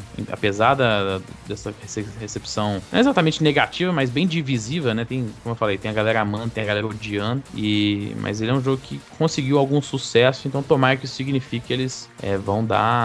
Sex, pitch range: male, 105-135 Hz